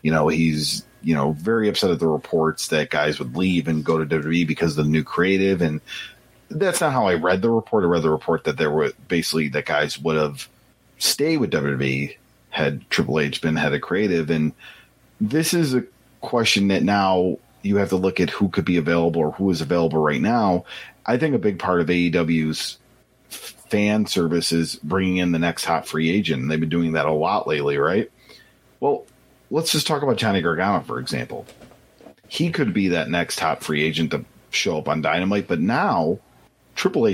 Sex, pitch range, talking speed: male, 80-100 Hz, 200 wpm